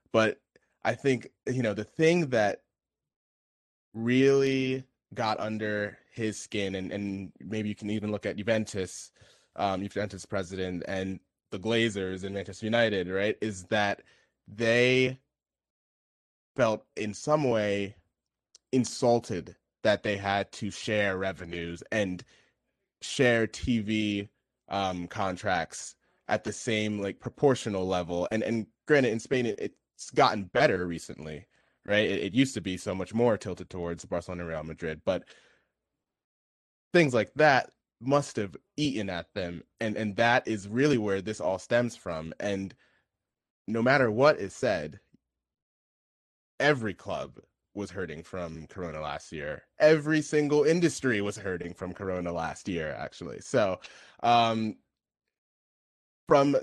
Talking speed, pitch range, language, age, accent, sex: 135 wpm, 90-115 Hz, English, 20-39, American, male